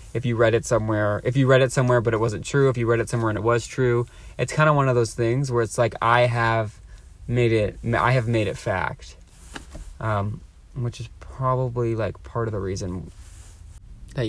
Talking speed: 220 wpm